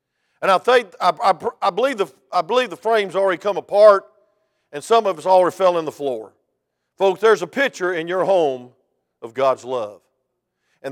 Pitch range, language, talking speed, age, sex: 135-180 Hz, English, 190 wpm, 50-69, male